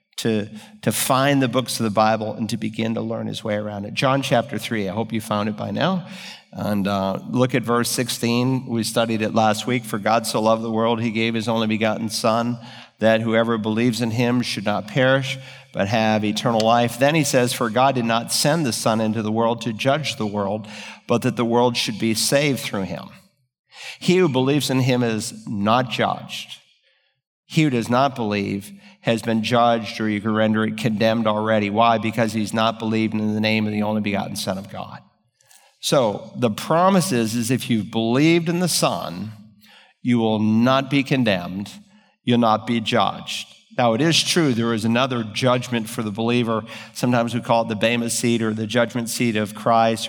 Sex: male